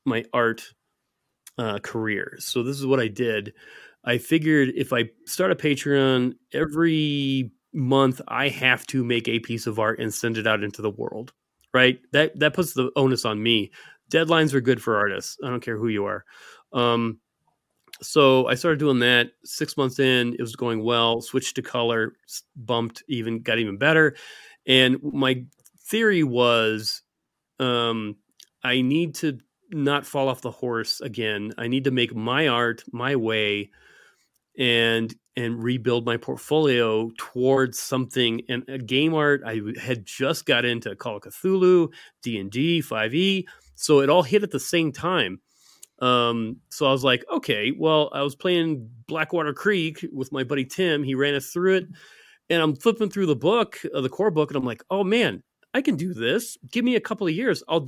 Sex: male